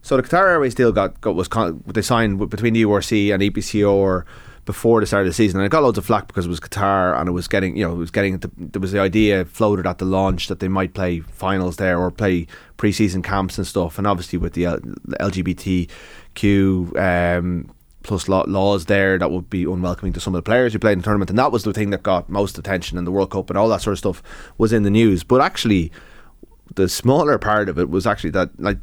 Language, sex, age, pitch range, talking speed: English, male, 20-39, 90-105 Hz, 250 wpm